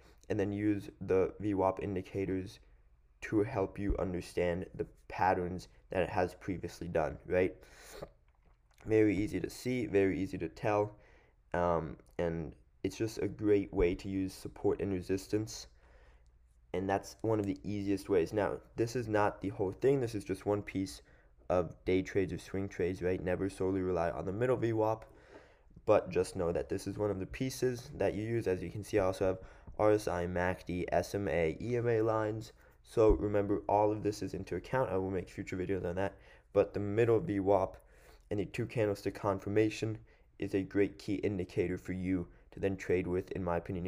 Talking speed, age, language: 185 wpm, 20-39, English